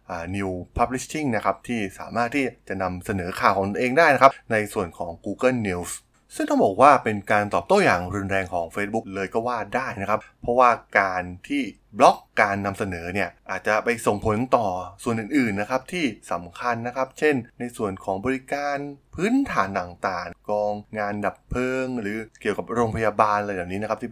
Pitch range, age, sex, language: 95-130 Hz, 20-39, male, Thai